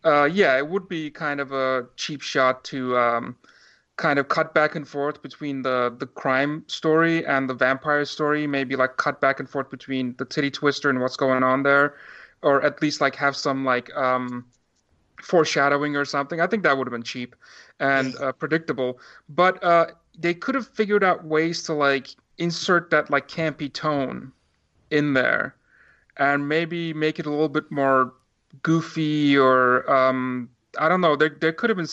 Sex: male